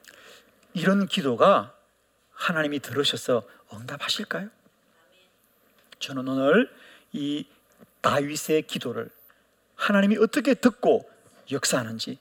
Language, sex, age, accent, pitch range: Korean, male, 40-59, native, 155-235 Hz